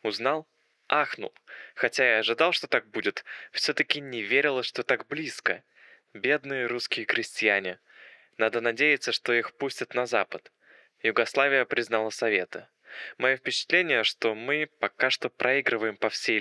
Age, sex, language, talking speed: 20-39, male, Russian, 130 wpm